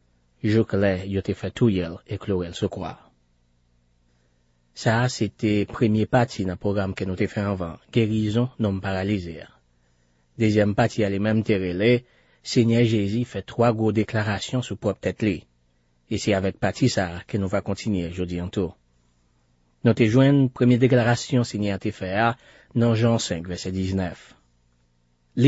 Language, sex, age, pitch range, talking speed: French, male, 40-59, 75-115 Hz, 155 wpm